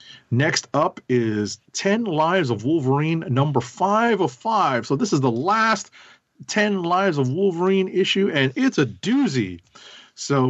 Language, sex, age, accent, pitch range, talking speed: English, male, 40-59, American, 105-135 Hz, 150 wpm